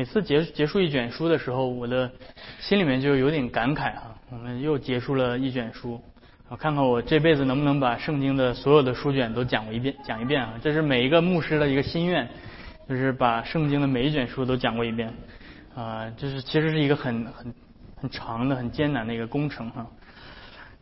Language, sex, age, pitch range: Chinese, male, 20-39, 125-160 Hz